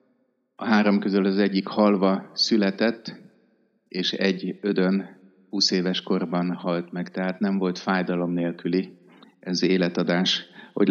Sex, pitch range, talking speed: male, 90-115 Hz, 125 wpm